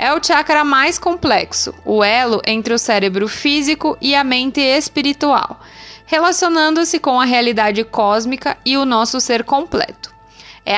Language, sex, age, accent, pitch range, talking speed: English, female, 20-39, Brazilian, 235-290 Hz, 145 wpm